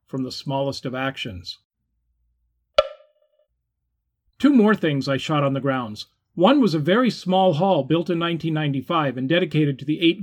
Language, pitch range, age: English, 135-185 Hz, 40-59